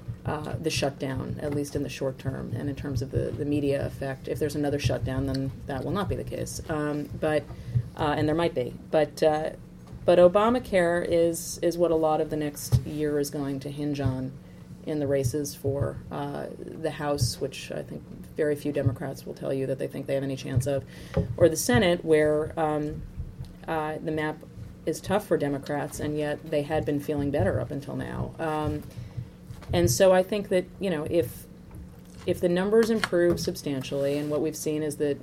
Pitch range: 135-155 Hz